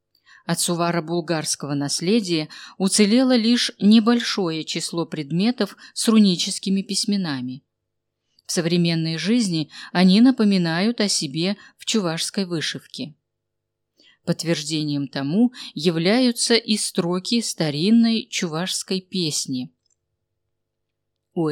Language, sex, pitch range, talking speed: Russian, female, 150-205 Hz, 85 wpm